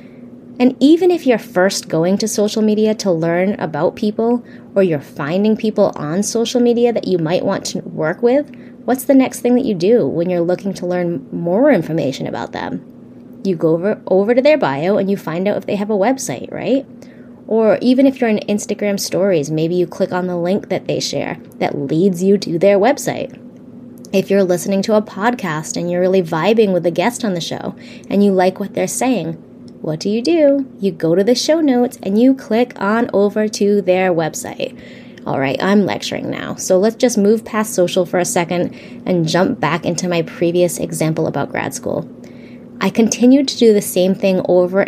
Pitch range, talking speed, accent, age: 180-240 Hz, 205 wpm, American, 20-39